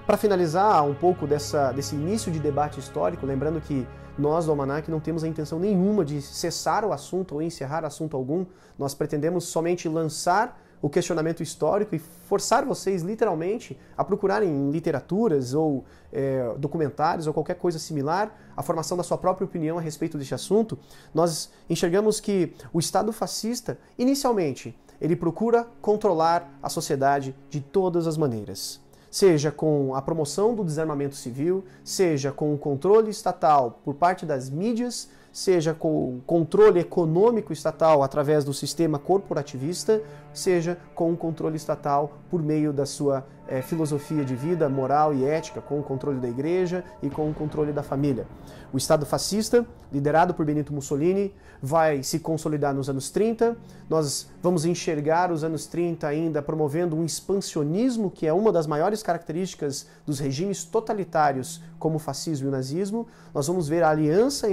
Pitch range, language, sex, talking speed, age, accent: 145-180 Hz, Portuguese, male, 160 wpm, 30-49, Brazilian